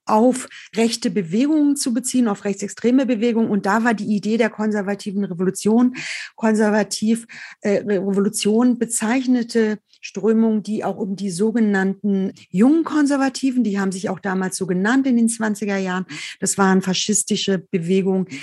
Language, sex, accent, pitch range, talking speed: German, female, German, 190-225 Hz, 140 wpm